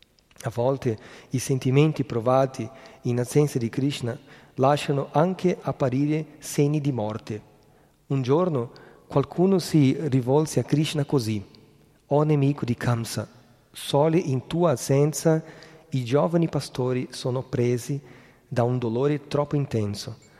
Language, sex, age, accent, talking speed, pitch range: Italian, male, 40-59, native, 120 wpm, 115-145 Hz